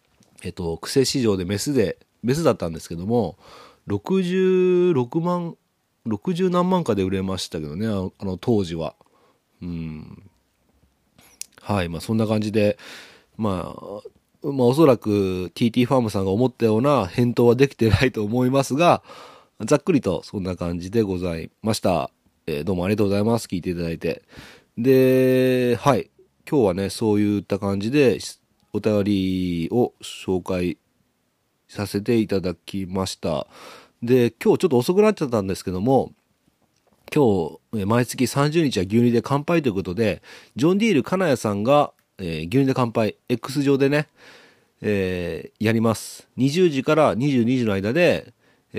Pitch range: 95-130 Hz